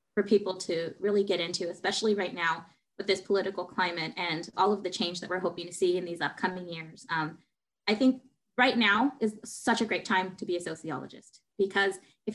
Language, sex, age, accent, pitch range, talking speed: English, female, 20-39, American, 180-225 Hz, 210 wpm